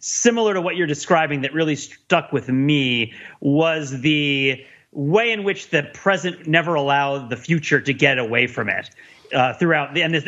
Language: English